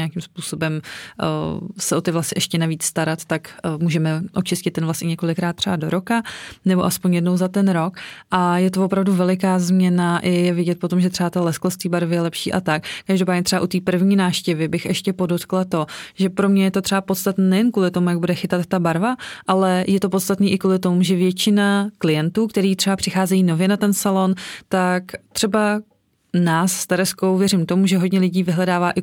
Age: 20-39